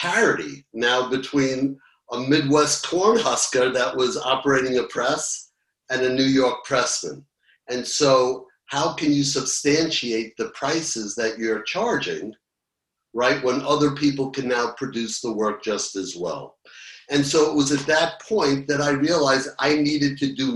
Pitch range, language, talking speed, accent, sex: 120-145 Hz, English, 155 wpm, American, male